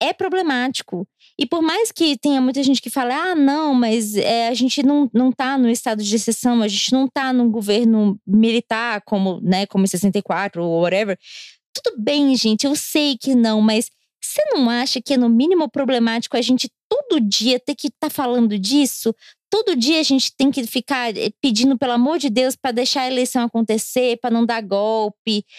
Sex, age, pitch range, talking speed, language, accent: female, 20-39, 215-270 Hz, 195 wpm, Portuguese, Brazilian